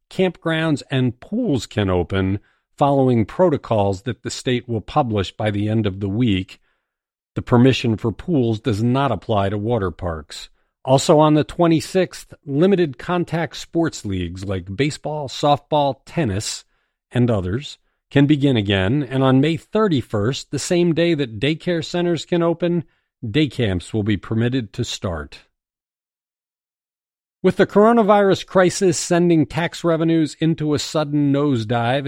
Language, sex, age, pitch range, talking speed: English, male, 50-69, 110-150 Hz, 140 wpm